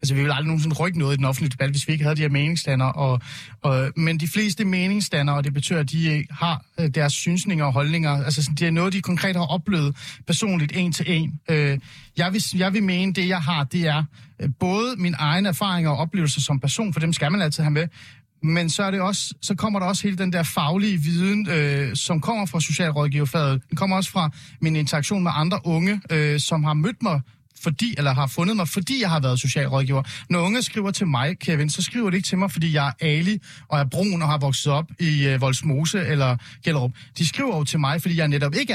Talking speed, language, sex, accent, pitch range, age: 230 wpm, Danish, male, native, 140-175 Hz, 30-49